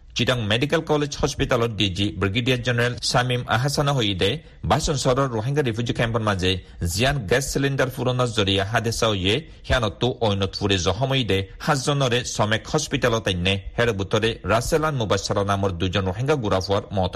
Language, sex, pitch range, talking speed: Bengali, male, 105-130 Hz, 120 wpm